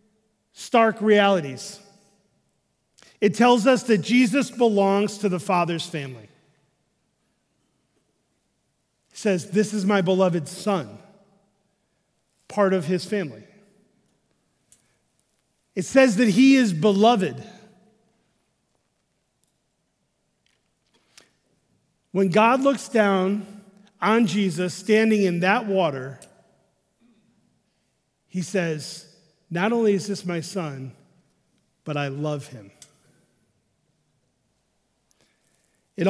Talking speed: 85 wpm